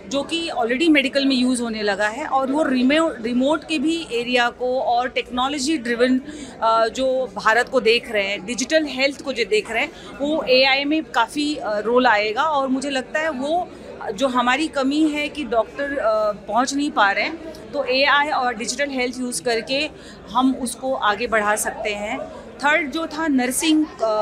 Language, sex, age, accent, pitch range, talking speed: Hindi, female, 30-49, native, 230-295 Hz, 180 wpm